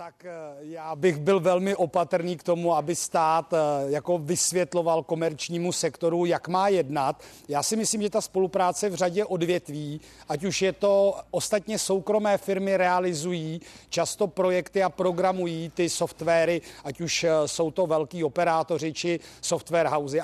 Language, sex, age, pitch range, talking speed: Czech, male, 40-59, 165-200 Hz, 145 wpm